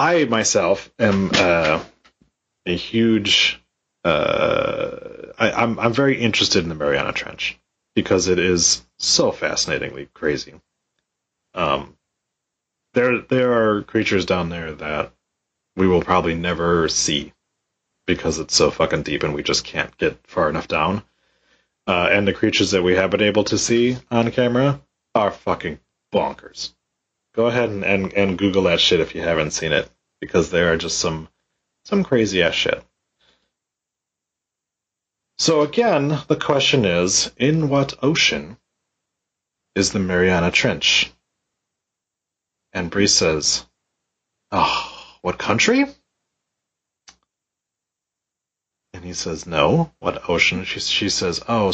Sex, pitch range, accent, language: male, 85-125 Hz, American, English